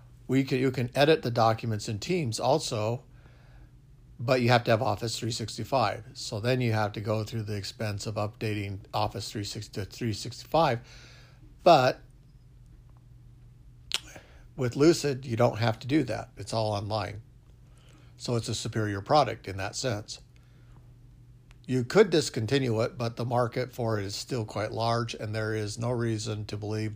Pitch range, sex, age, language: 110-125 Hz, male, 60-79, English